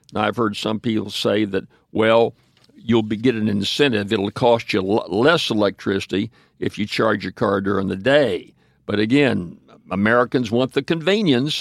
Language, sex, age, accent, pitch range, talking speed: English, male, 60-79, American, 110-135 Hz, 155 wpm